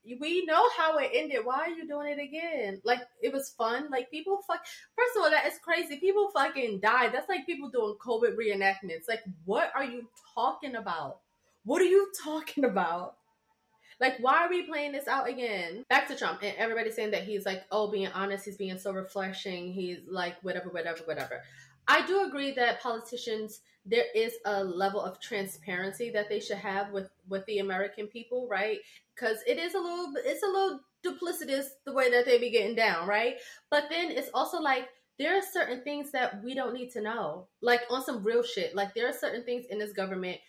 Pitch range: 195-290 Hz